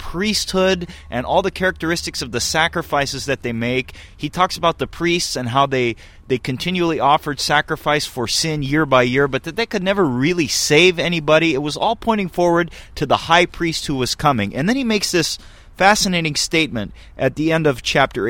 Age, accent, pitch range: 30-49, American, 135-190 Hz